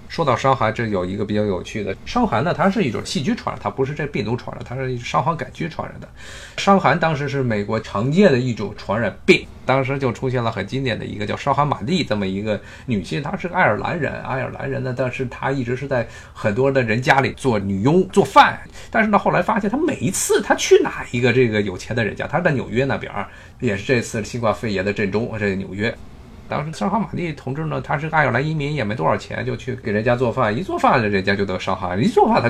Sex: male